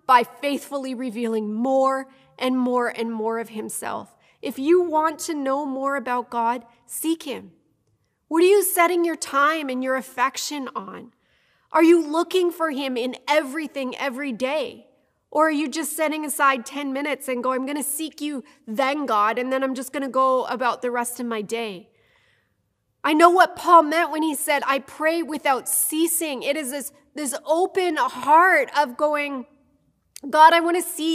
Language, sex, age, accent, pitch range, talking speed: English, female, 30-49, American, 265-320 Hz, 175 wpm